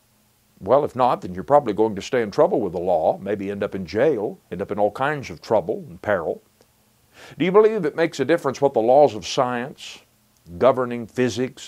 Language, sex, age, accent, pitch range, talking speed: English, male, 60-79, American, 105-135 Hz, 215 wpm